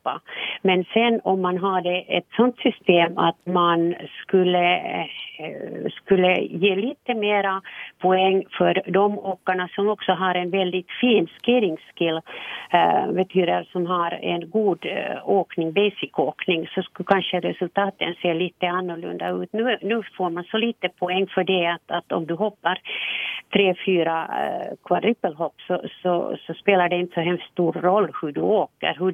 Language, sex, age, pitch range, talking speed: Swedish, female, 50-69, 170-195 Hz, 160 wpm